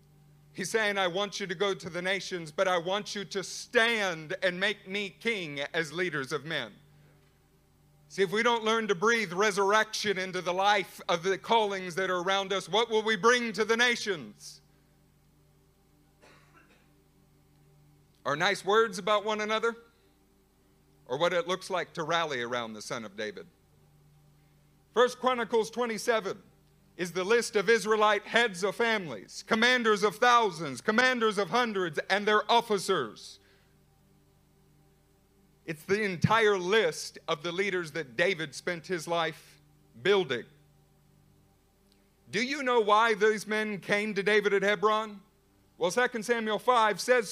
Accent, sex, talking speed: American, male, 145 wpm